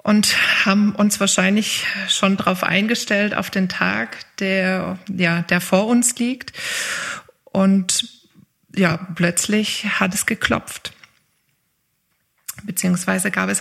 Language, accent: German, German